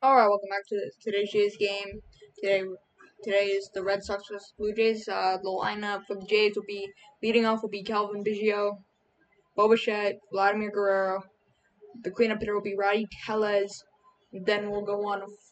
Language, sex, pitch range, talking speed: English, female, 195-215 Hz, 180 wpm